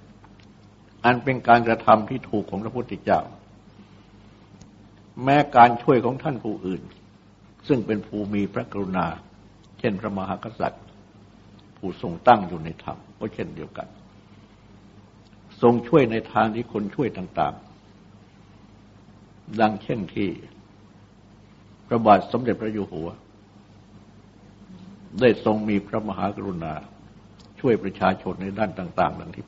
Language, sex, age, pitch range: Thai, male, 60-79, 100-110 Hz